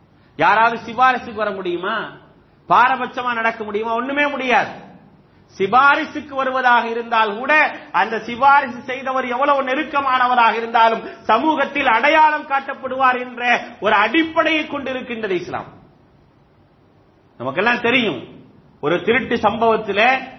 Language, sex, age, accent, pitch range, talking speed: English, male, 40-59, Indian, 210-260 Hz, 95 wpm